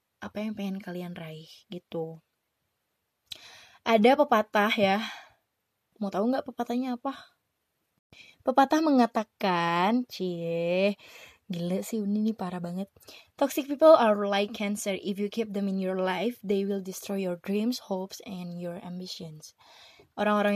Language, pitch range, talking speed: Indonesian, 185-220 Hz, 130 wpm